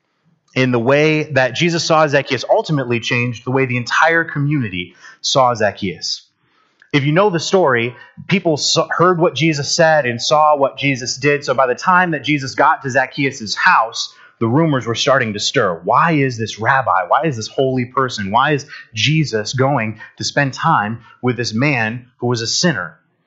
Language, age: English, 30-49